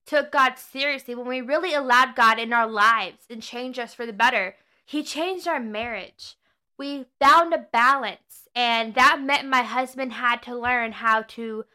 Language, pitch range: English, 250-325 Hz